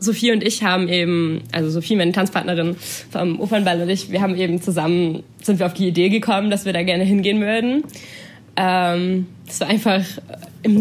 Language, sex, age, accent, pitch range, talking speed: German, female, 20-39, German, 170-210 Hz, 190 wpm